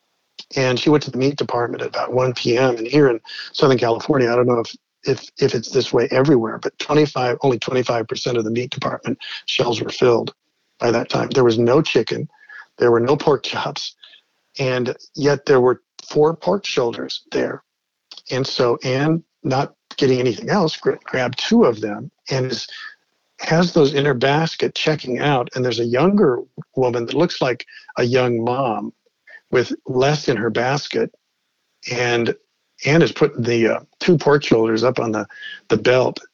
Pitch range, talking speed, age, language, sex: 125-180 Hz, 175 wpm, 50-69, English, male